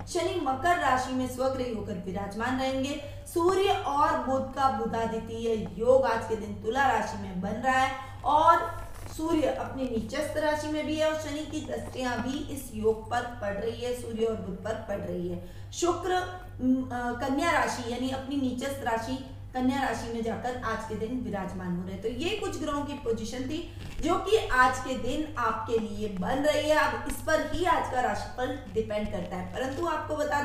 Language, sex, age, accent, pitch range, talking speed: Hindi, female, 20-39, native, 230-300 Hz, 190 wpm